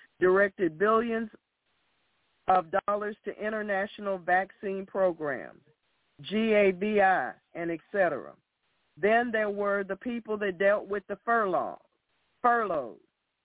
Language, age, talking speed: English, 50-69, 100 wpm